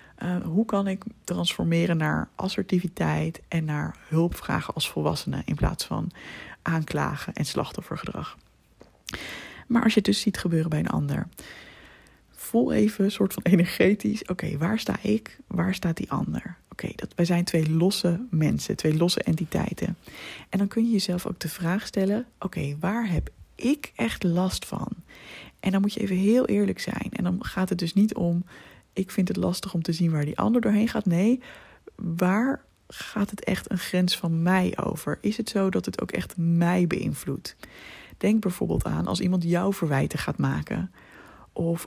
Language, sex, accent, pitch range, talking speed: Dutch, female, Dutch, 170-205 Hz, 180 wpm